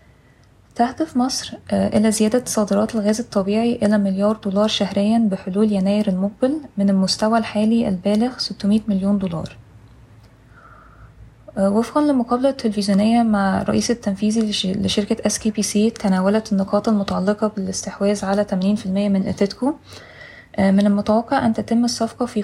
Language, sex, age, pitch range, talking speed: Arabic, female, 20-39, 195-220 Hz, 115 wpm